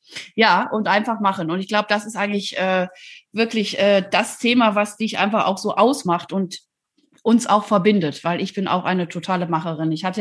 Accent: German